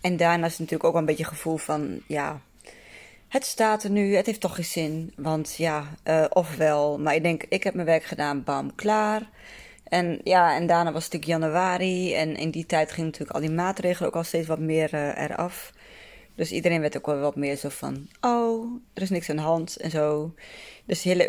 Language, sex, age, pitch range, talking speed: Dutch, female, 20-39, 155-190 Hz, 230 wpm